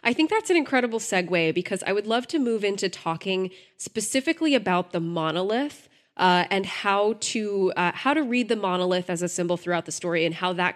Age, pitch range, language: 20-39, 170-200 Hz, English